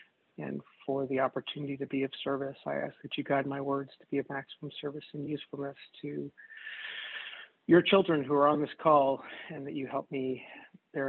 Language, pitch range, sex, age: English, 135-150 Hz, male, 40-59